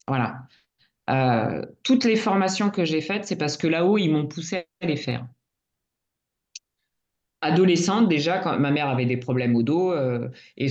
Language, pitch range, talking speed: French, 135-175 Hz, 170 wpm